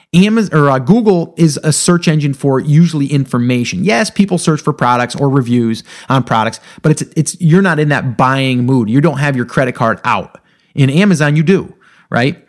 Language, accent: English, American